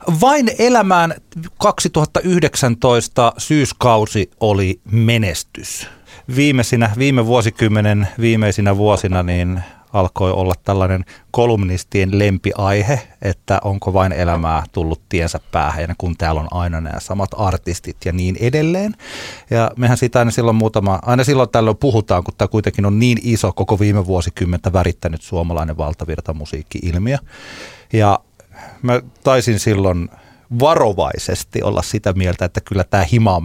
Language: Finnish